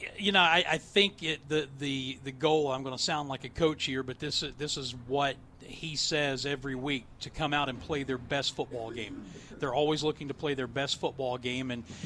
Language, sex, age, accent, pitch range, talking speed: English, male, 40-59, American, 135-160 Hz, 230 wpm